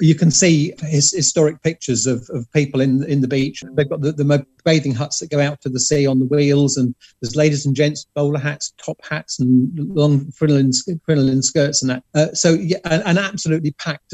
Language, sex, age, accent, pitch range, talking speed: English, male, 40-59, British, 135-160 Hz, 215 wpm